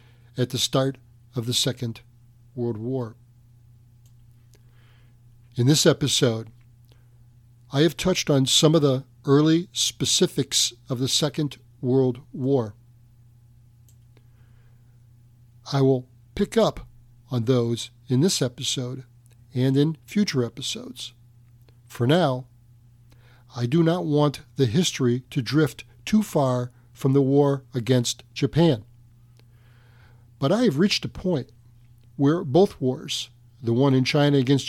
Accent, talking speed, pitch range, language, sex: American, 120 wpm, 120-145 Hz, English, male